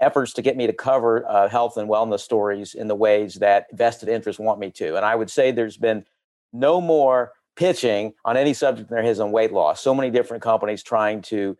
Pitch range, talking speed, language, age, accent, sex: 110-135 Hz, 230 wpm, English, 50-69, American, male